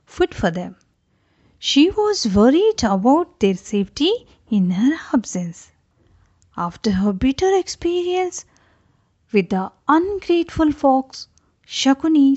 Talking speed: 100 wpm